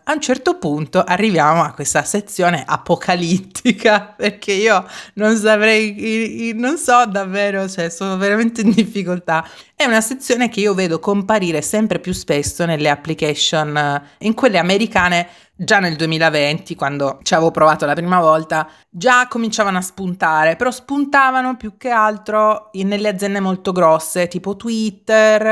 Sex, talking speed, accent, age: female, 145 wpm, native, 30-49